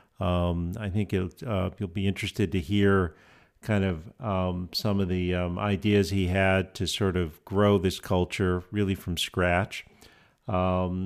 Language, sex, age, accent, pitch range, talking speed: English, male, 50-69, American, 95-120 Hz, 165 wpm